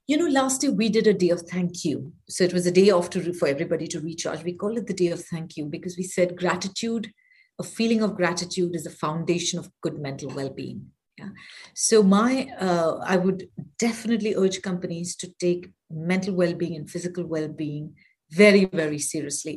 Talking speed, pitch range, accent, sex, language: 200 wpm, 160-200 Hz, Indian, female, English